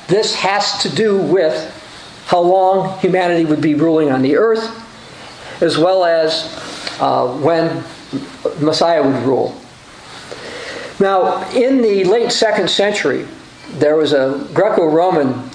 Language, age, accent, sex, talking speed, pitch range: English, 50-69, American, male, 125 wpm, 165-215 Hz